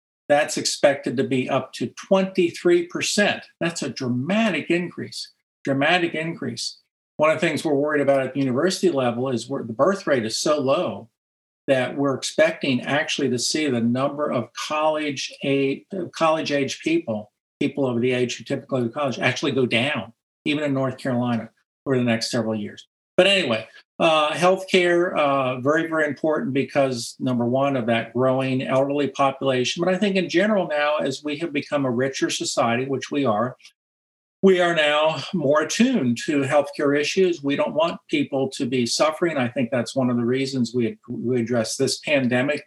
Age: 50-69